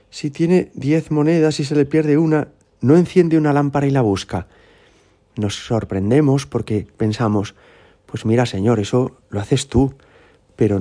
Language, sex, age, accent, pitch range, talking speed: Spanish, male, 30-49, Spanish, 105-130 Hz, 155 wpm